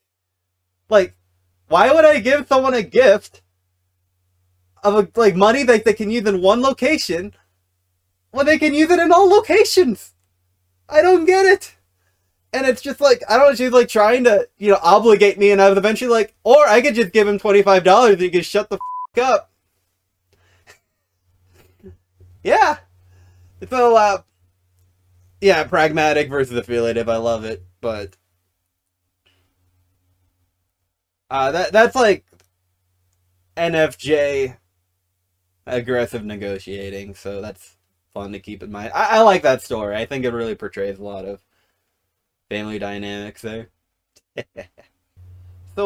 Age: 20-39